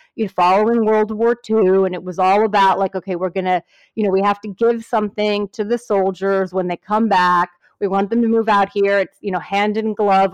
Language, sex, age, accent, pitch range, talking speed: English, female, 30-49, American, 185-220 Hz, 240 wpm